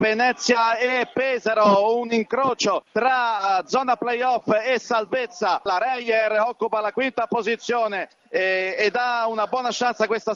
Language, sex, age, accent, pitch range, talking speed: Italian, male, 40-59, native, 210-255 Hz, 130 wpm